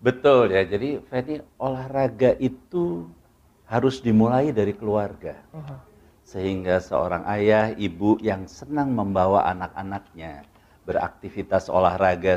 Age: 60-79